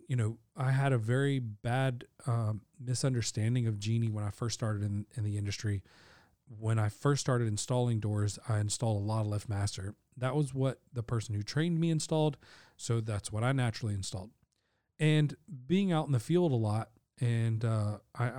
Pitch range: 105-130 Hz